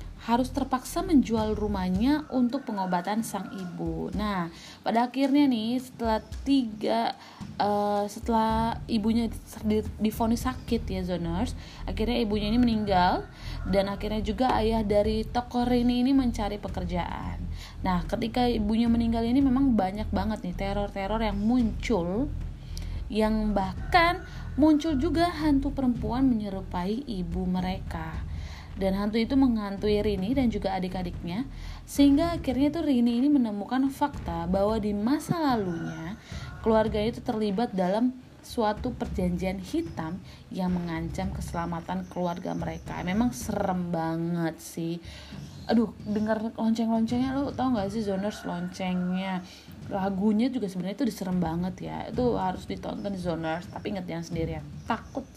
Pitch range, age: 180-245 Hz, 20-39